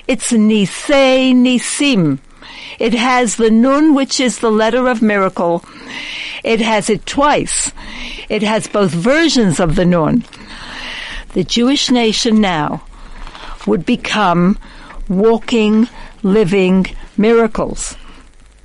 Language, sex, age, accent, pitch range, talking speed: English, female, 60-79, American, 215-280 Hz, 105 wpm